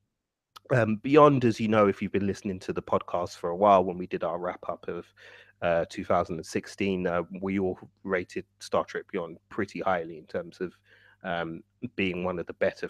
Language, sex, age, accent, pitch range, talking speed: English, male, 30-49, British, 90-105 Hz, 190 wpm